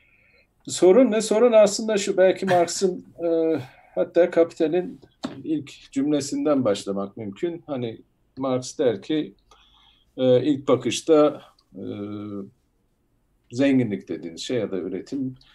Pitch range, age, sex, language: 115-155 Hz, 50-69, male, Turkish